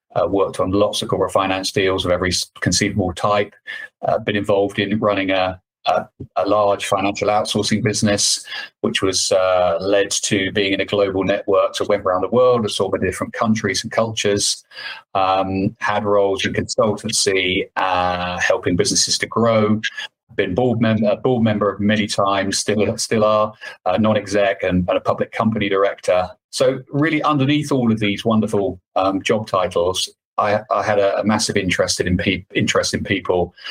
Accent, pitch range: British, 95-110 Hz